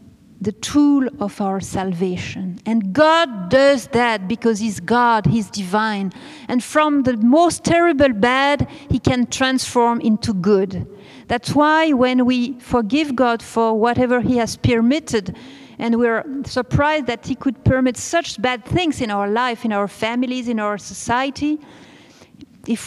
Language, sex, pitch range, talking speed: English, female, 205-265 Hz, 145 wpm